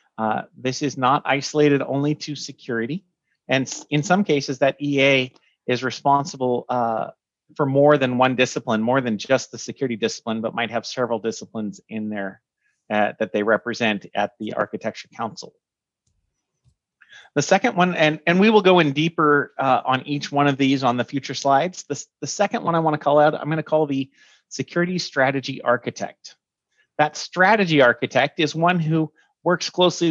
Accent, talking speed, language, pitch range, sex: American, 175 wpm, English, 130-170 Hz, male